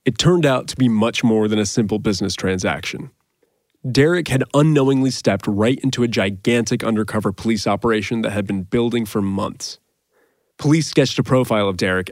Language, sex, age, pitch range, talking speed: English, male, 20-39, 105-135 Hz, 175 wpm